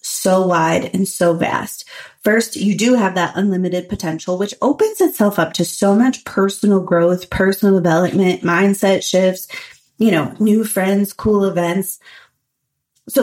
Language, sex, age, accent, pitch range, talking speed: English, female, 30-49, American, 175-215 Hz, 145 wpm